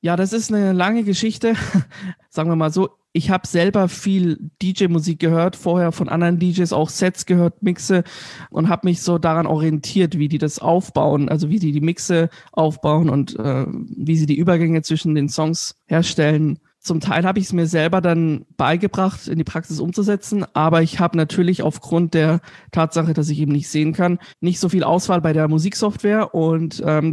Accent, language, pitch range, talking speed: German, German, 155-175 Hz, 190 wpm